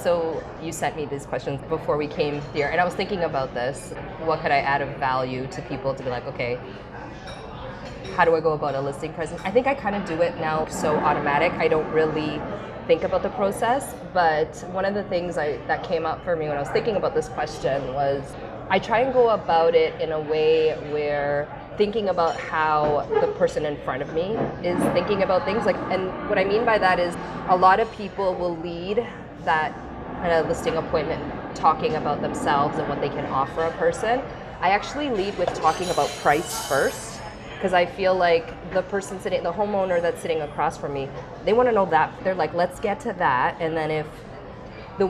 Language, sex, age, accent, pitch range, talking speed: English, female, 20-39, American, 150-190 Hz, 215 wpm